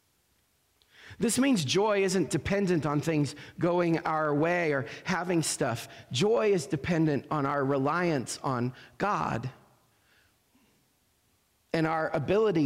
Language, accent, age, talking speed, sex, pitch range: English, American, 40-59, 115 wpm, male, 140-190 Hz